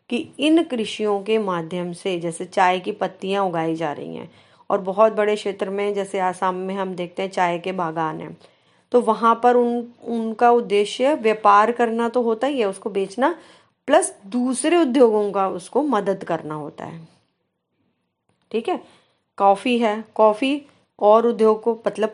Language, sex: Hindi, female